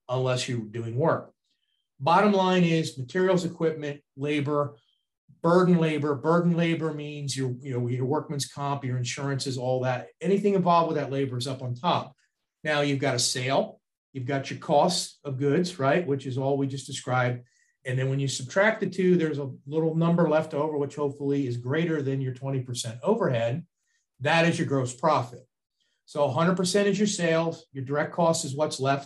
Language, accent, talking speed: English, American, 185 wpm